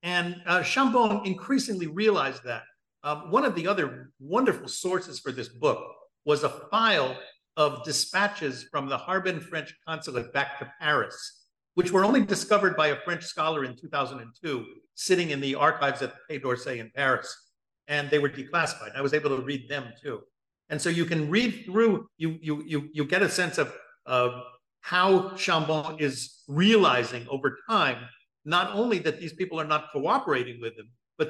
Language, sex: English, male